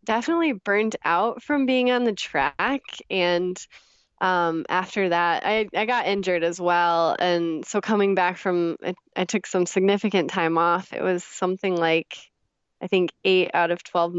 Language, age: English, 20-39